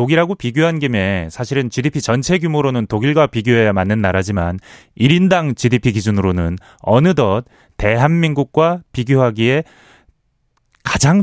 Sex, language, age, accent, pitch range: male, Korean, 30-49, native, 110-180 Hz